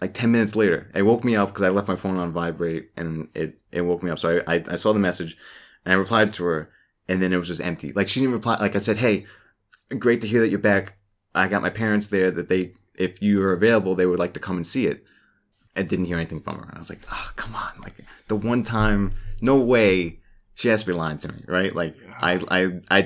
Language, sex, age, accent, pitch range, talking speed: English, male, 30-49, American, 85-105 Hz, 265 wpm